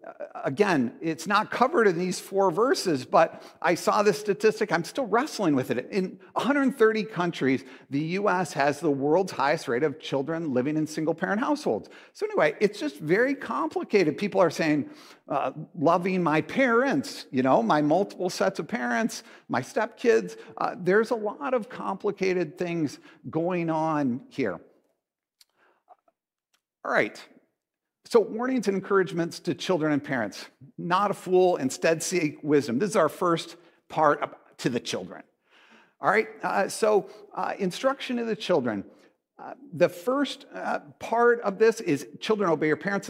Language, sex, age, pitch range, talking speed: English, male, 50-69, 160-225 Hz, 155 wpm